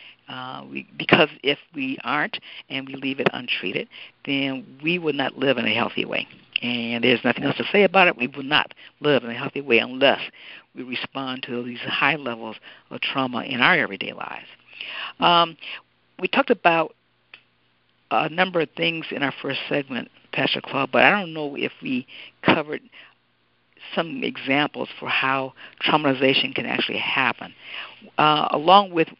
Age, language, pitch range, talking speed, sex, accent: 60-79, English, 125-155 Hz, 165 wpm, female, American